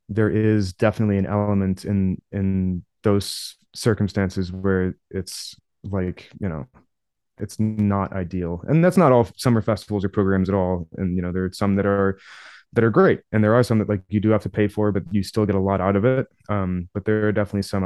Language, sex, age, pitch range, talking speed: English, male, 20-39, 95-105 Hz, 220 wpm